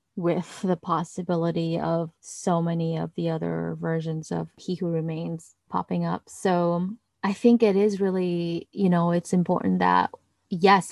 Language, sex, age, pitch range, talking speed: English, female, 20-39, 175-205 Hz, 155 wpm